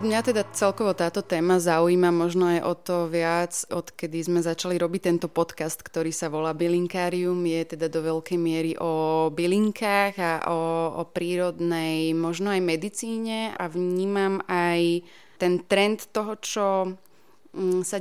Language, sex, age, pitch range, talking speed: Slovak, female, 20-39, 170-195 Hz, 145 wpm